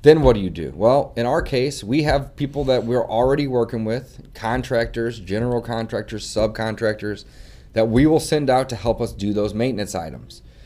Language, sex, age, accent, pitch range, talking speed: English, male, 30-49, American, 105-140 Hz, 185 wpm